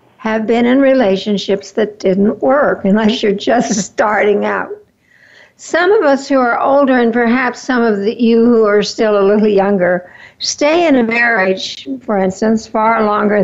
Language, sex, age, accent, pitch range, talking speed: English, female, 60-79, American, 205-260 Hz, 165 wpm